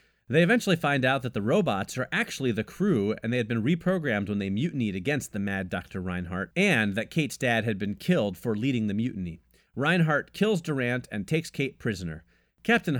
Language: English